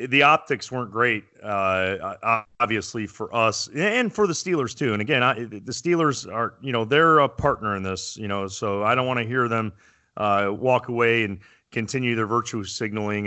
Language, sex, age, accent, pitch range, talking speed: English, male, 30-49, American, 105-135 Hz, 195 wpm